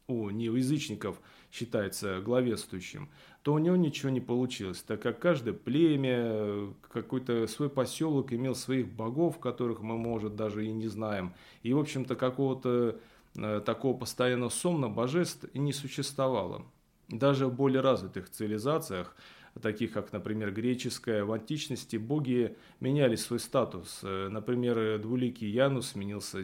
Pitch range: 105-135 Hz